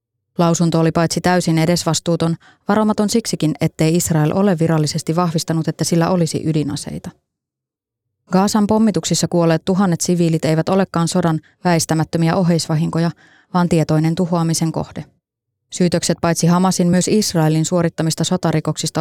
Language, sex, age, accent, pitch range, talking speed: Finnish, female, 20-39, native, 160-180 Hz, 115 wpm